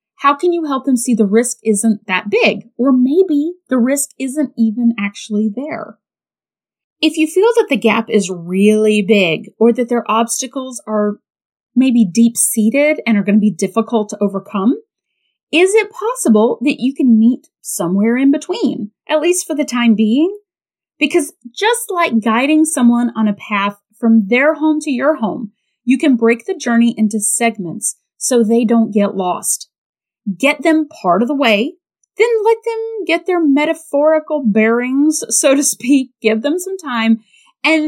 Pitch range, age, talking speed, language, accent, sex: 215-290 Hz, 30-49, 170 wpm, English, American, female